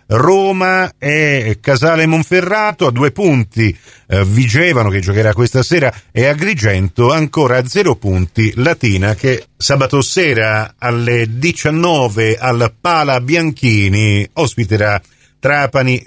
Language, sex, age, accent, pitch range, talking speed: Italian, male, 40-59, native, 110-145 Hz, 110 wpm